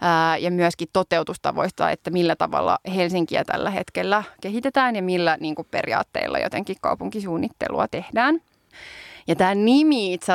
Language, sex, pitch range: Finnish, female, 170-210 Hz